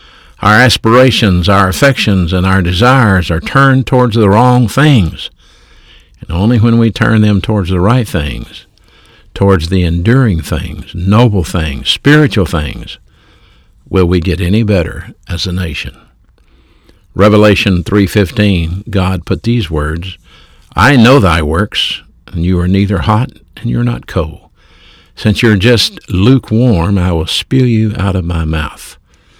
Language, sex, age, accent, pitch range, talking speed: English, male, 60-79, American, 85-110 Hz, 145 wpm